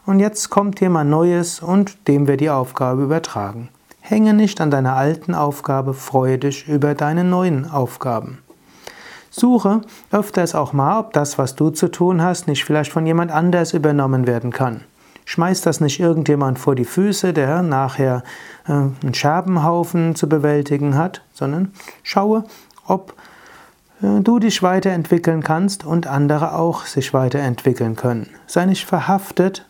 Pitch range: 140-180 Hz